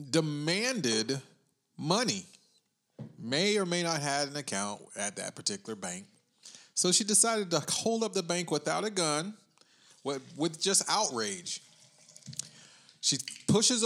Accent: American